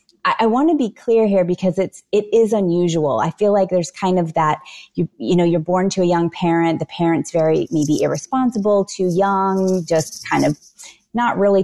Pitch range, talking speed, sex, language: 170-215 Hz, 210 wpm, female, English